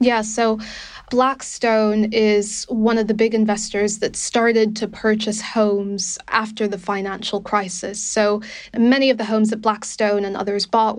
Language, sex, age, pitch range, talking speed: English, female, 20-39, 205-225 Hz, 155 wpm